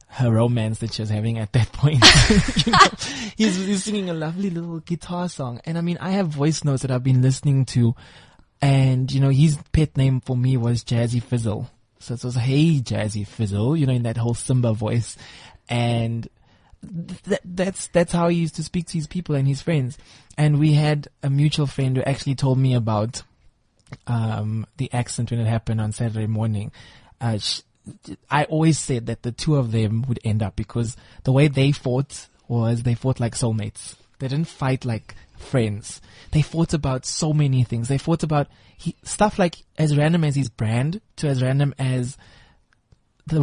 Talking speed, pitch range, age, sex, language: 195 wpm, 120-150 Hz, 20-39, male, English